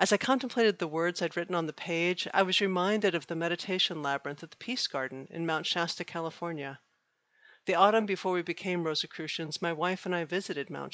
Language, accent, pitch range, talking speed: English, American, 160-195 Hz, 205 wpm